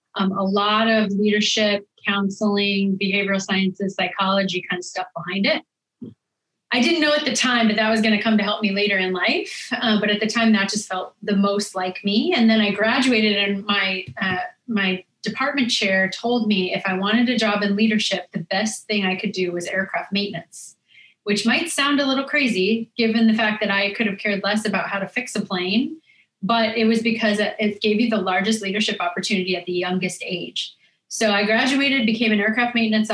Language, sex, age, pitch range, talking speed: English, female, 30-49, 195-225 Hz, 210 wpm